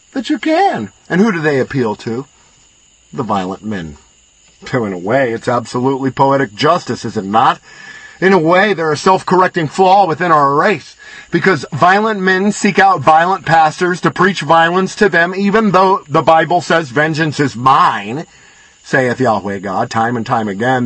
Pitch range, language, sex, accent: 135-190 Hz, English, male, American